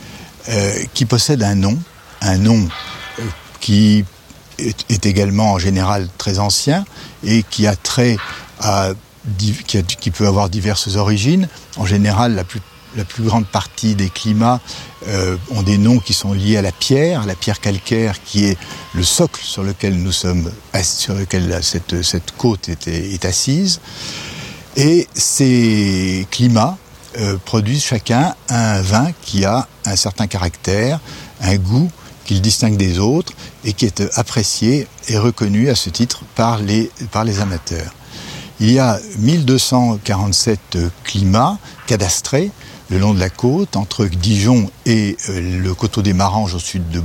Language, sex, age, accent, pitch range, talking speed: French, male, 60-79, French, 95-120 Hz, 150 wpm